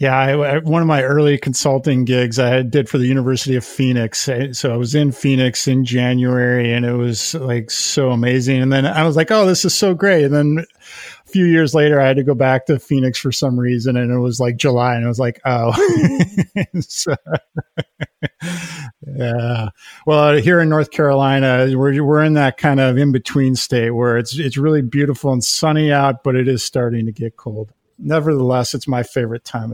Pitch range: 125-155 Hz